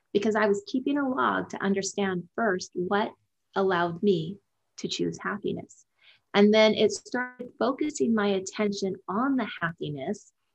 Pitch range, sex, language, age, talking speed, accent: 185-215 Hz, female, English, 30-49, 140 wpm, American